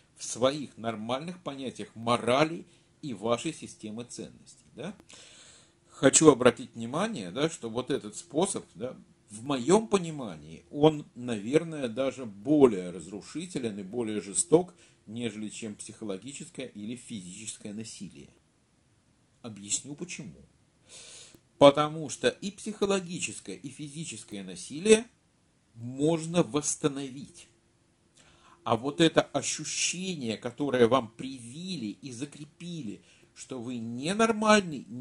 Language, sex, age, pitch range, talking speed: Russian, male, 50-69, 115-165 Hz, 100 wpm